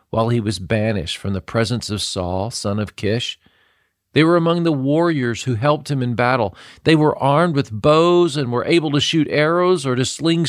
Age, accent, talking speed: 50-69, American, 205 wpm